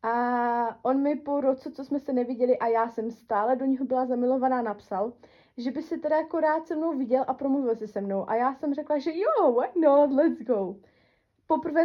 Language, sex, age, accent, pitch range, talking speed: Czech, female, 20-39, native, 220-260 Hz, 215 wpm